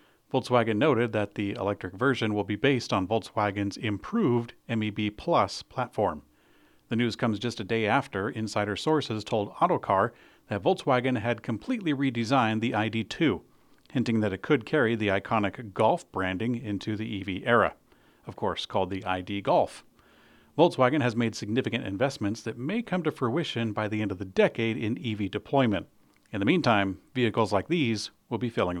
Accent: American